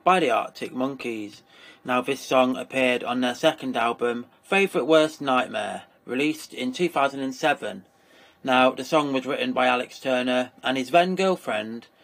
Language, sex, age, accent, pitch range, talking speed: English, male, 30-49, British, 120-140 Hz, 150 wpm